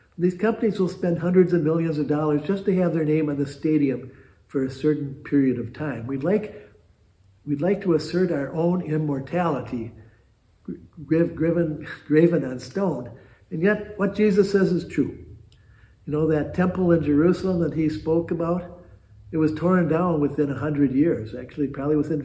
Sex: male